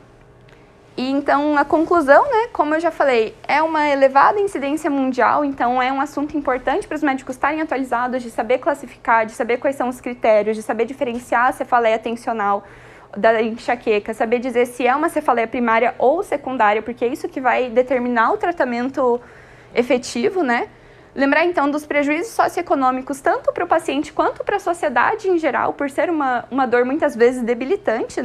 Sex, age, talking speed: female, 20-39, 175 wpm